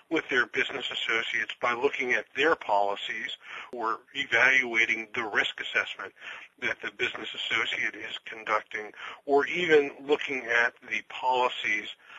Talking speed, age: 130 wpm, 50-69